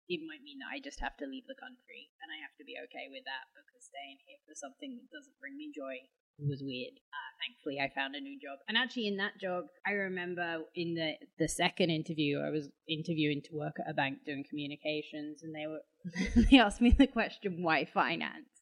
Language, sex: English, female